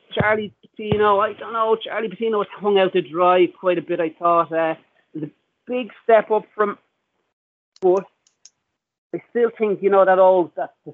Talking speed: 185 wpm